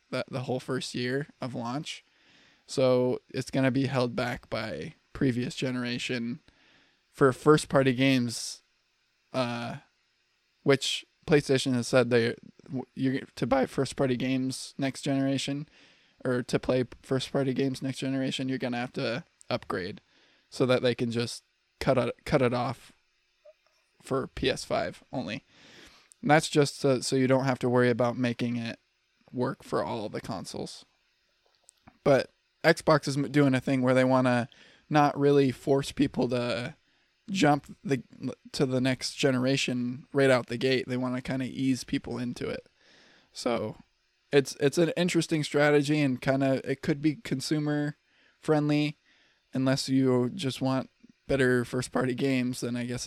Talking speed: 155 wpm